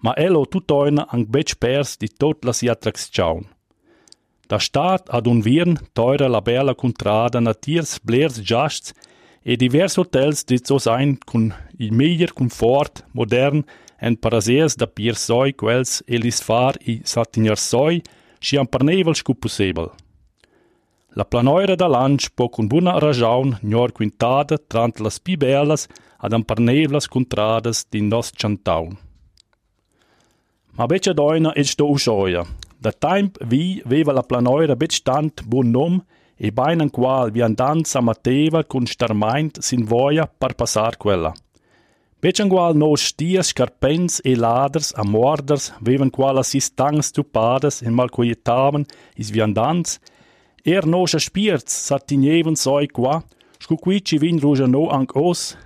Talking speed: 120 wpm